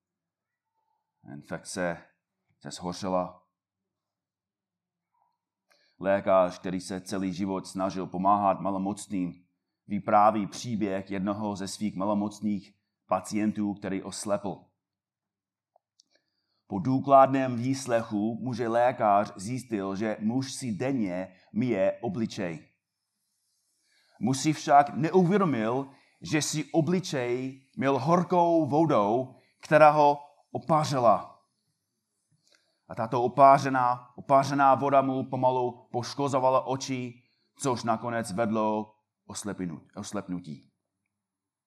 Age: 30-49